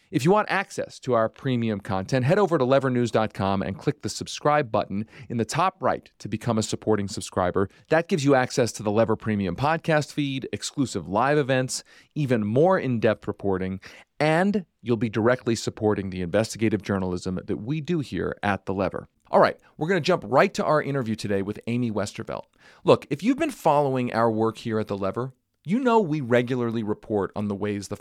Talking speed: 195 wpm